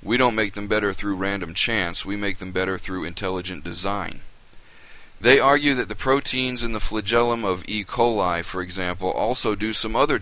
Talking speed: 190 wpm